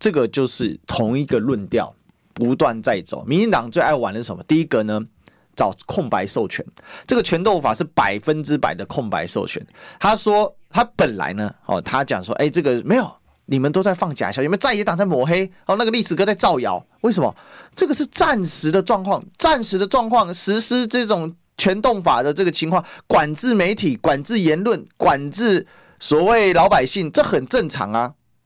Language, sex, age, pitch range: Chinese, male, 30-49, 155-230 Hz